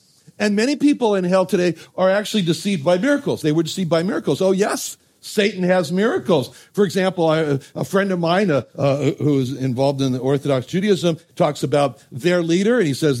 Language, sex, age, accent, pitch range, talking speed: English, male, 60-79, American, 145-200 Hz, 195 wpm